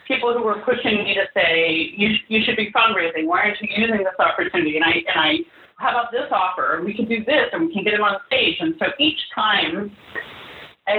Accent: American